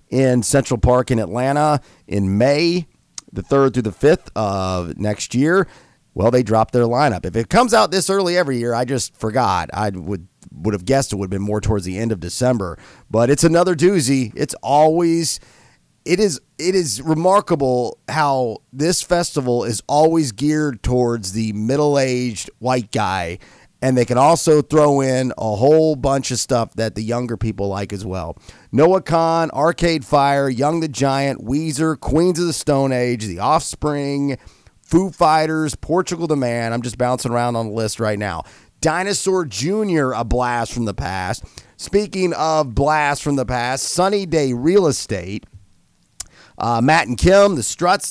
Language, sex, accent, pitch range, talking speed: English, male, American, 115-160 Hz, 170 wpm